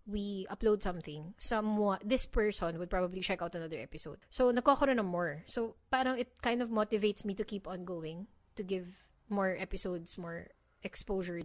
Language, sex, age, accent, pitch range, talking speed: English, female, 20-39, Filipino, 175-230 Hz, 175 wpm